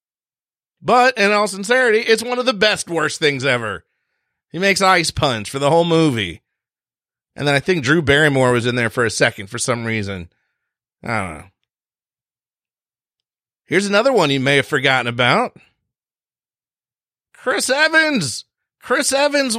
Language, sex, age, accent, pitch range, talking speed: English, male, 40-59, American, 125-180 Hz, 155 wpm